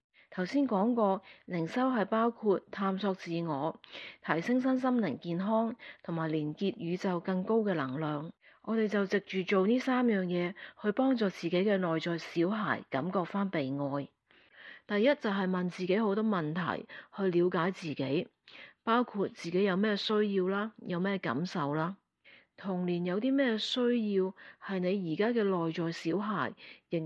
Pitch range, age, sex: 170-215 Hz, 40-59, female